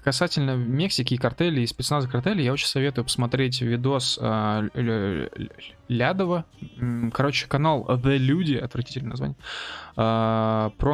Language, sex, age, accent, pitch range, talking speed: Russian, male, 20-39, native, 115-135 Hz, 145 wpm